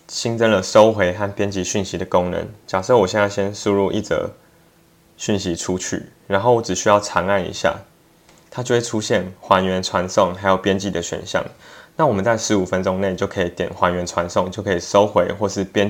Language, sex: Chinese, male